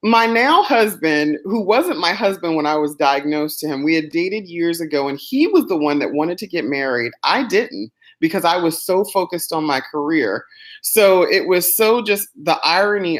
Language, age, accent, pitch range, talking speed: English, 30-49, American, 150-195 Hz, 205 wpm